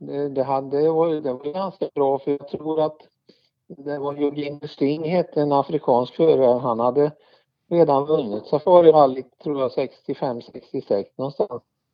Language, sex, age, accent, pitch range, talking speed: Swedish, male, 50-69, Norwegian, 120-140 Hz, 165 wpm